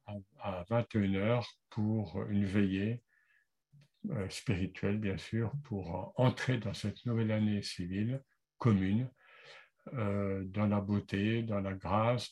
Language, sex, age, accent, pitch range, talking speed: French, male, 60-79, French, 100-120 Hz, 115 wpm